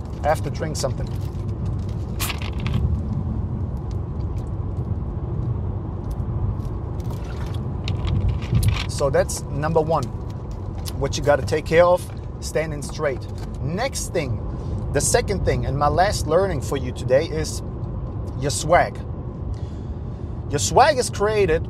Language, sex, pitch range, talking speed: English, male, 100-130 Hz, 100 wpm